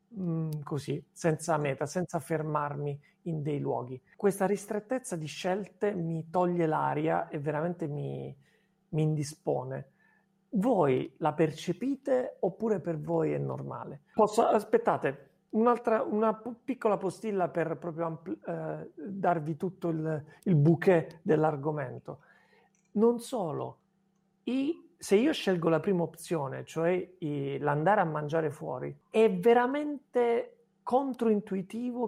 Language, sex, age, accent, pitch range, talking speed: Italian, male, 40-59, native, 155-210 Hz, 110 wpm